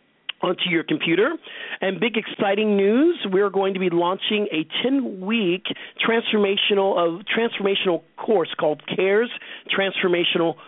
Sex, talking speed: male, 110 wpm